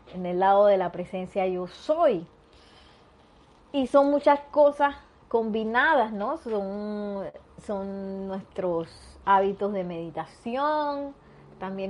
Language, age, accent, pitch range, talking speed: Spanish, 30-49, American, 180-265 Hz, 105 wpm